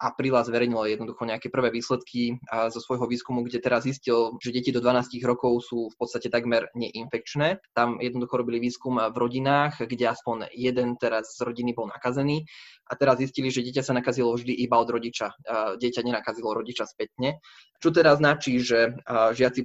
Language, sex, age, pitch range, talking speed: Slovak, male, 20-39, 120-130 Hz, 170 wpm